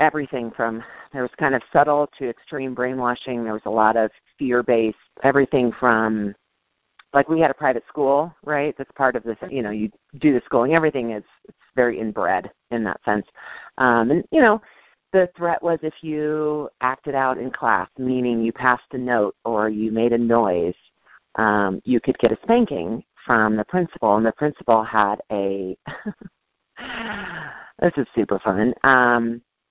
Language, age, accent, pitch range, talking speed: English, 40-59, American, 115-145 Hz, 170 wpm